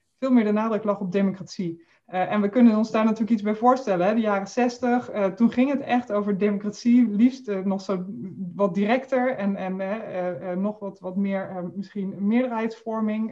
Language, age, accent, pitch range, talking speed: Dutch, 20-39, Dutch, 185-220 Hz, 205 wpm